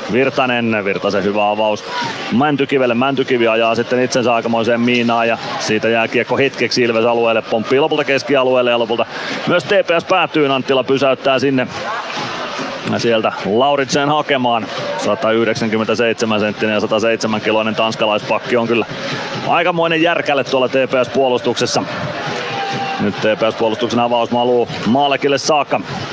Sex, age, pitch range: male, 30-49, 115-130 Hz